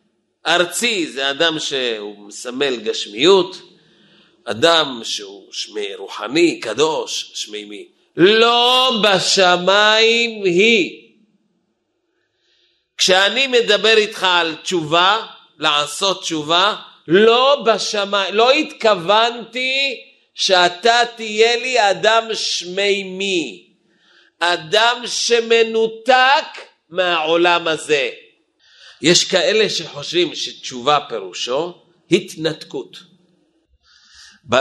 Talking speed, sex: 75 wpm, male